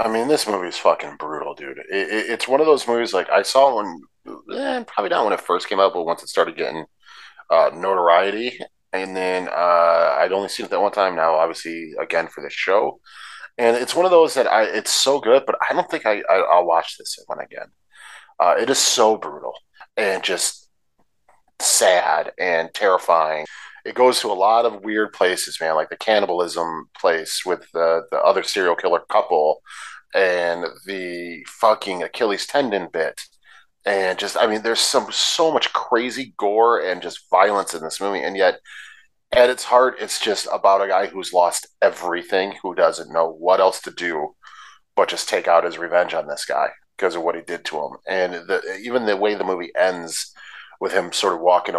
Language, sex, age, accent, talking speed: English, male, 30-49, American, 200 wpm